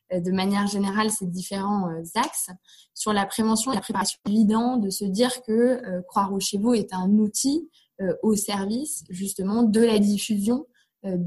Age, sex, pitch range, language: 20-39, female, 185-220 Hz, French